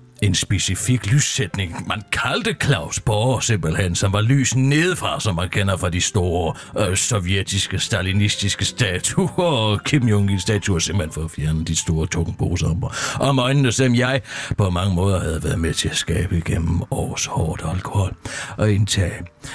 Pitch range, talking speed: 90-135 Hz, 165 wpm